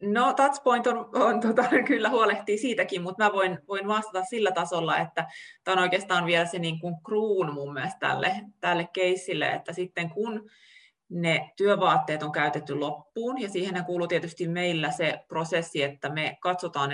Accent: native